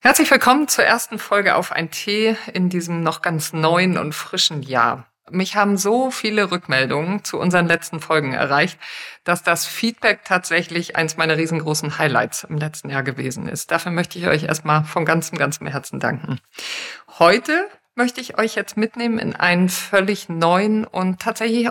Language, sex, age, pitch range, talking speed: German, female, 50-69, 160-210 Hz, 170 wpm